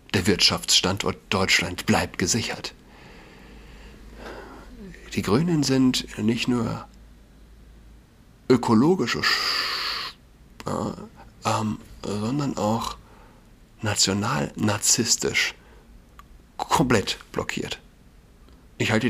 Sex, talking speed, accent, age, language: male, 65 wpm, German, 60-79, German